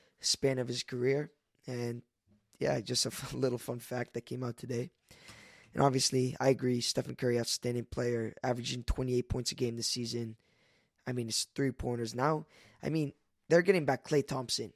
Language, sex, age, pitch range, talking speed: English, male, 20-39, 120-135 Hz, 185 wpm